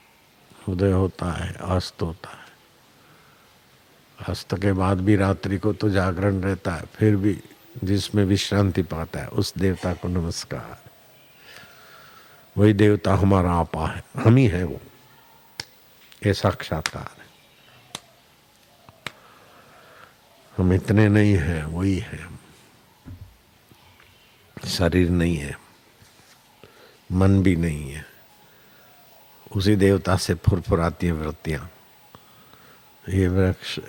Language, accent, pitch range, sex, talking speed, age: Hindi, native, 90-100 Hz, male, 105 wpm, 60-79